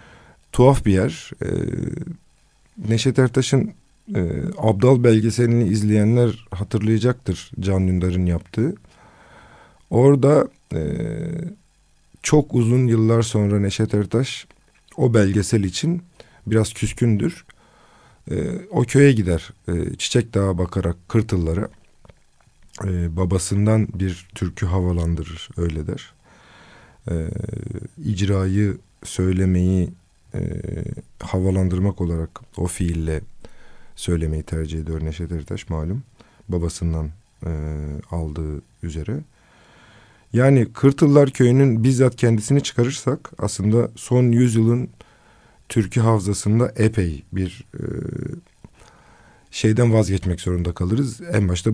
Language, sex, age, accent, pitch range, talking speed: Turkish, male, 50-69, native, 90-120 Hz, 95 wpm